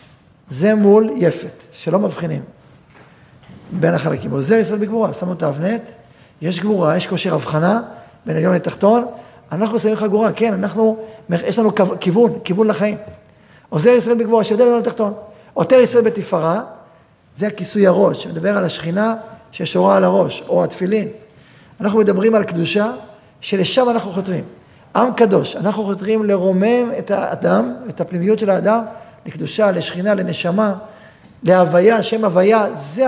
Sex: male